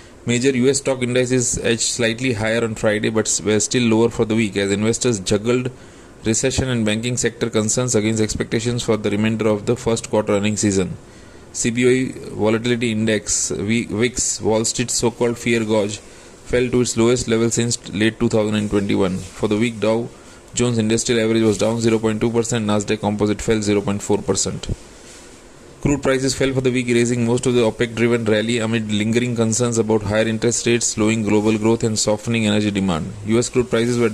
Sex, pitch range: male, 105-120 Hz